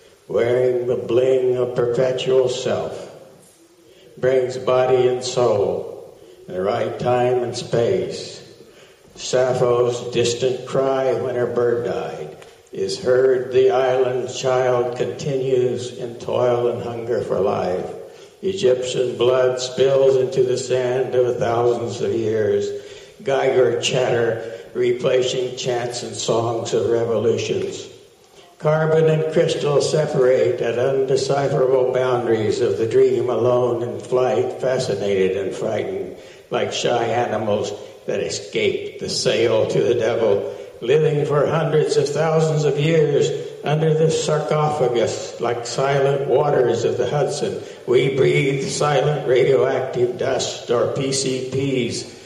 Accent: American